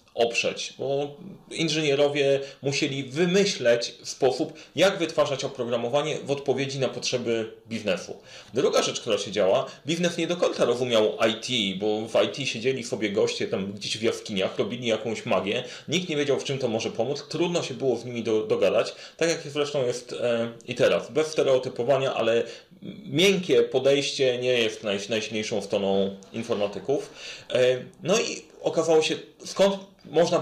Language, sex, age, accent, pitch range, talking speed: Polish, male, 30-49, native, 115-170 Hz, 145 wpm